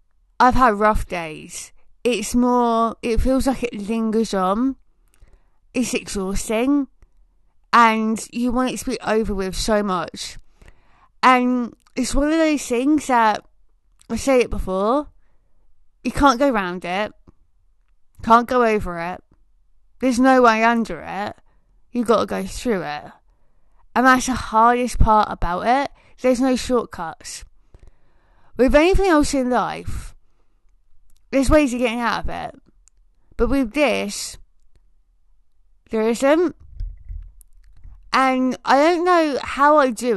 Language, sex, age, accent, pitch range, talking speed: English, female, 20-39, British, 170-255 Hz, 135 wpm